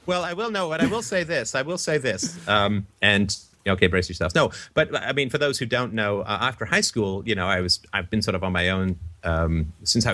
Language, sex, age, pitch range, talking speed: English, male, 30-49, 90-110 Hz, 265 wpm